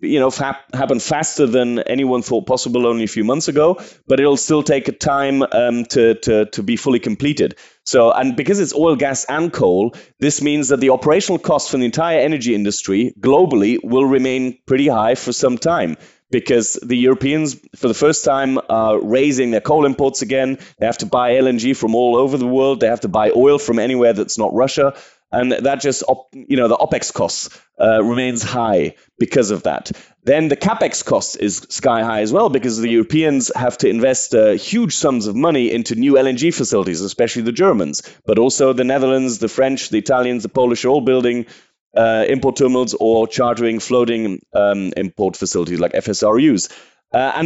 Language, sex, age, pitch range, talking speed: English, male, 30-49, 120-140 Hz, 195 wpm